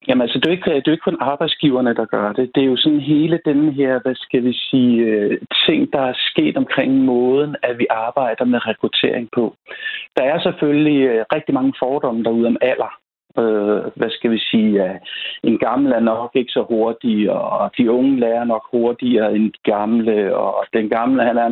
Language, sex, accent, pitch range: Danish, male, native, 115-145 Hz